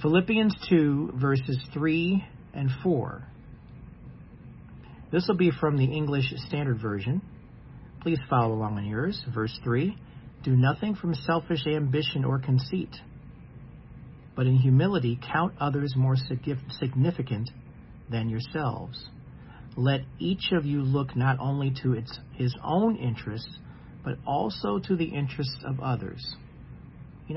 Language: English